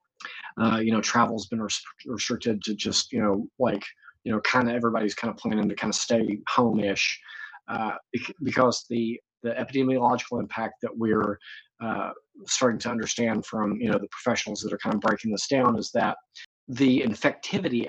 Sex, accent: male, American